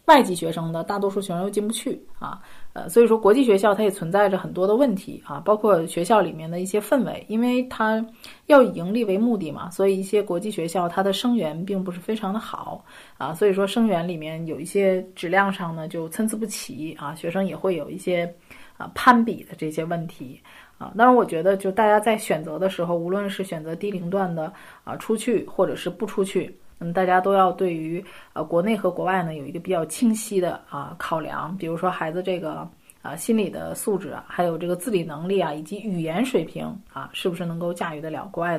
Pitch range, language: 170-210 Hz, Chinese